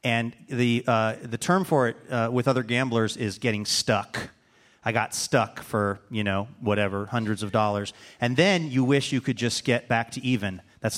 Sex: male